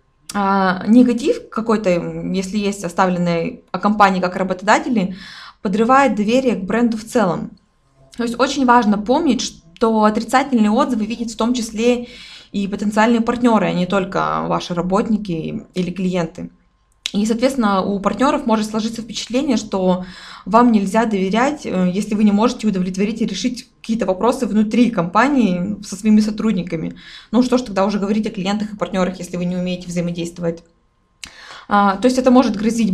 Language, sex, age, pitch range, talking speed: Russian, female, 20-39, 190-240 Hz, 150 wpm